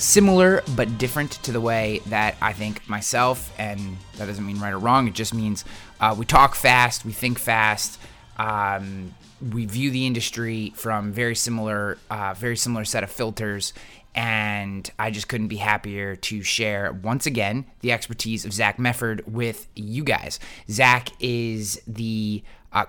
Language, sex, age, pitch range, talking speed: English, male, 20-39, 105-120 Hz, 165 wpm